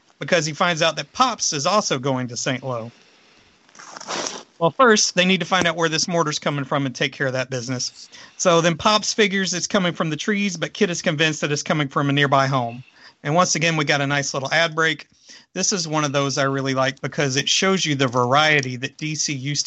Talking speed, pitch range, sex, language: 235 wpm, 135-175 Hz, male, English